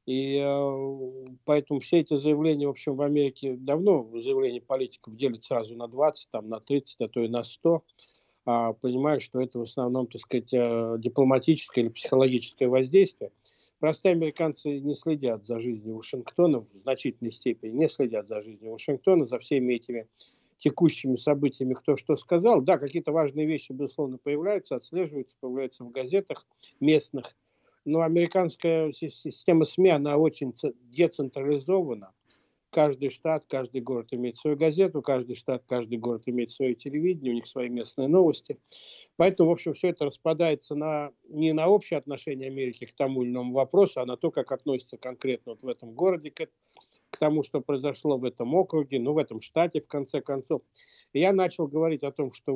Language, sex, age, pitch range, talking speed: Russian, male, 50-69, 130-160 Hz, 165 wpm